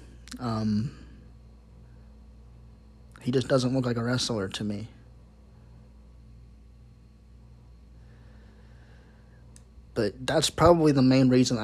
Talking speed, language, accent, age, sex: 80 wpm, English, American, 20-39, male